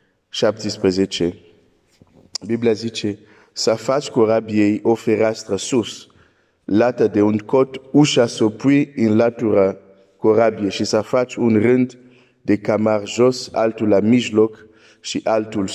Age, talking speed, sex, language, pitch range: 50-69, 120 wpm, male, Romanian, 110-130 Hz